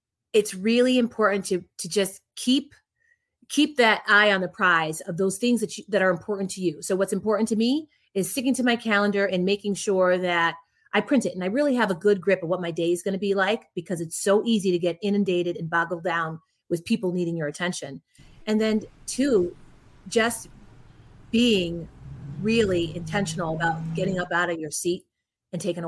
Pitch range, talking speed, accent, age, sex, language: 170-215 Hz, 200 wpm, American, 30-49, female, English